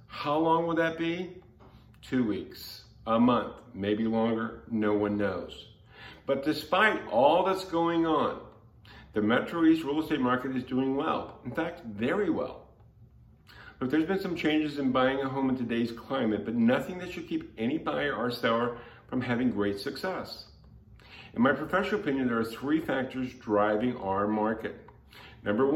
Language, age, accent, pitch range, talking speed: English, 50-69, American, 115-155 Hz, 165 wpm